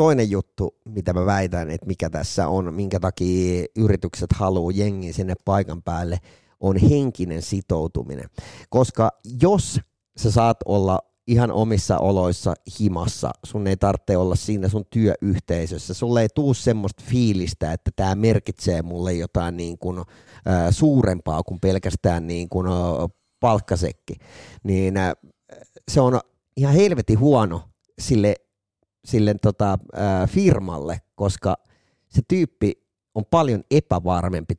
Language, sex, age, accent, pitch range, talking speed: Finnish, male, 30-49, native, 90-115 Hz, 115 wpm